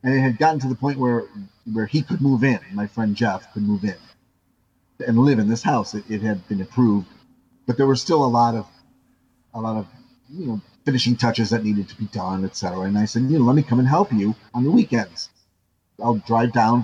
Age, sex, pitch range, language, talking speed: 40-59, male, 105-125 Hz, English, 235 wpm